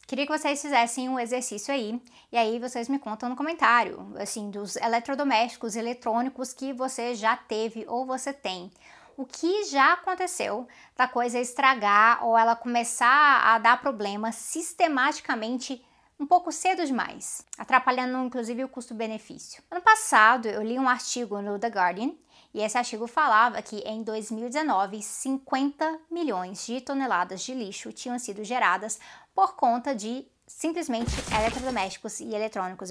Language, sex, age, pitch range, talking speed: Portuguese, female, 20-39, 220-275 Hz, 145 wpm